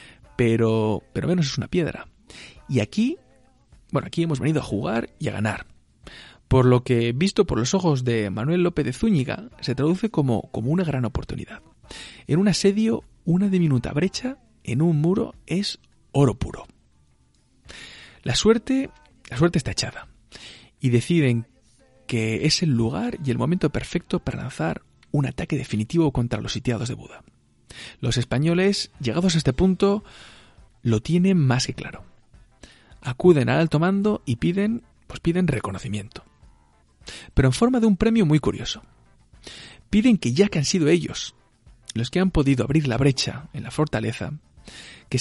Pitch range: 115-175 Hz